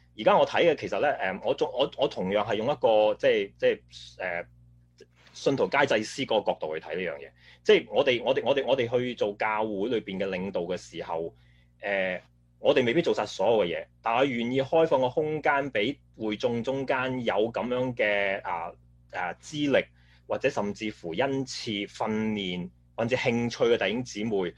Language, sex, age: Chinese, male, 30-49